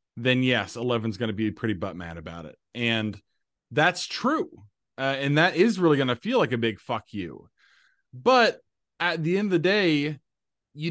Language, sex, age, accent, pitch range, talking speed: English, male, 30-49, American, 105-140 Hz, 180 wpm